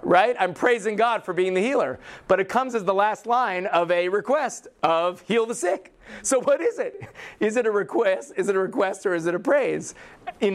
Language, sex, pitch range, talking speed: English, male, 160-225 Hz, 230 wpm